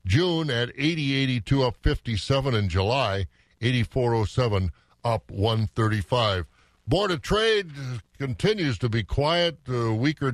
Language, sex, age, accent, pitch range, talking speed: English, male, 50-69, American, 110-135 Hz, 105 wpm